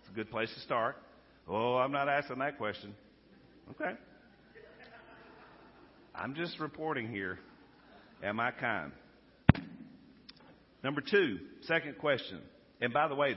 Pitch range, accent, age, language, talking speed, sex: 105-140 Hz, American, 50-69, English, 115 wpm, male